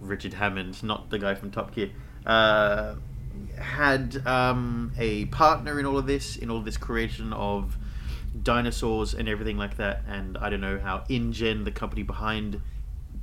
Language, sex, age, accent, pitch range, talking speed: English, male, 30-49, Australian, 100-130 Hz, 170 wpm